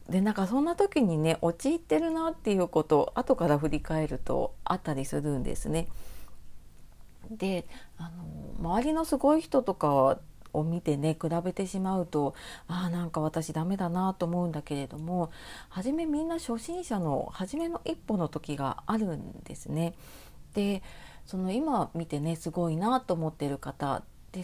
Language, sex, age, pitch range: Japanese, female, 40-59, 160-235 Hz